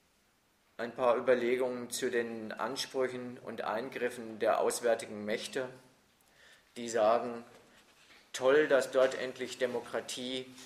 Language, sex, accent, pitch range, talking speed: German, male, German, 110-125 Hz, 100 wpm